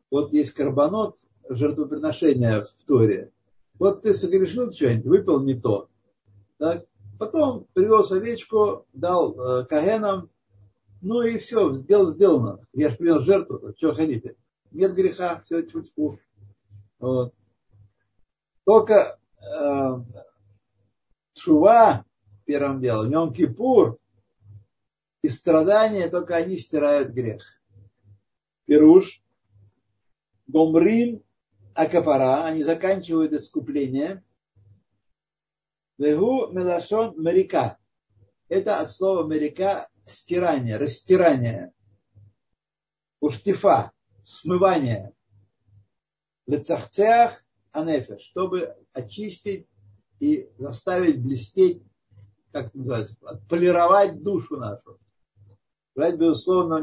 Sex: male